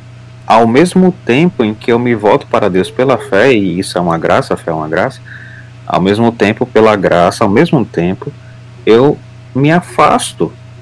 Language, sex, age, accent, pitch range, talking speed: Portuguese, male, 40-59, Brazilian, 95-125 Hz, 185 wpm